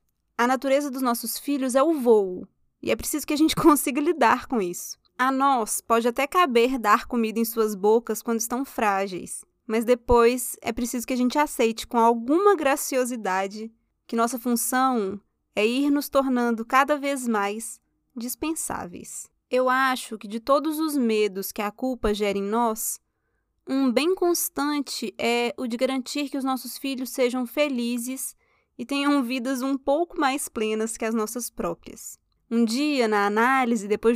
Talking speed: 165 wpm